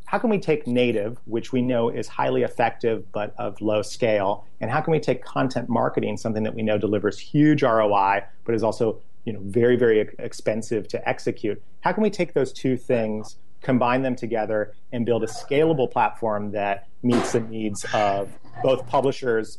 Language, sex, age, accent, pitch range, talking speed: English, male, 30-49, American, 105-125 Hz, 180 wpm